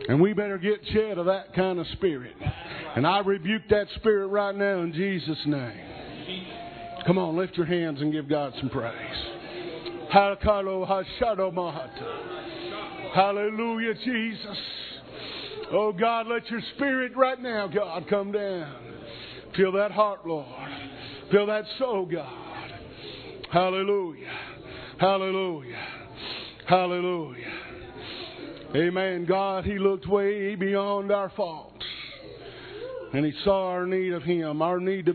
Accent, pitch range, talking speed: American, 165-205 Hz, 120 wpm